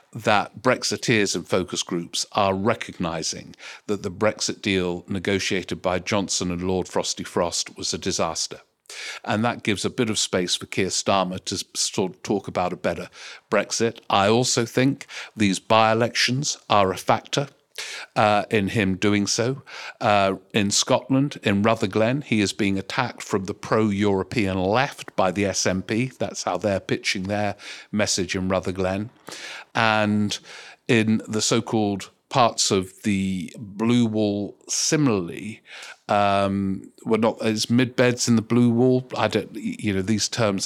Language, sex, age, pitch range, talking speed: English, male, 50-69, 100-120 Hz, 150 wpm